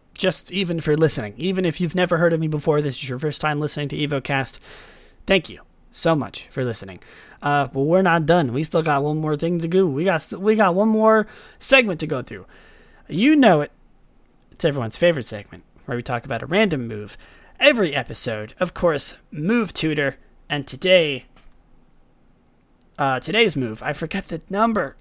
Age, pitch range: 30-49, 140-200 Hz